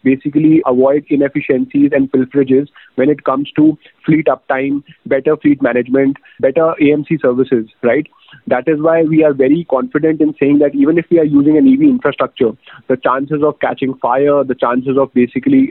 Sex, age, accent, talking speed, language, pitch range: male, 30-49, Indian, 170 wpm, English, 130-160 Hz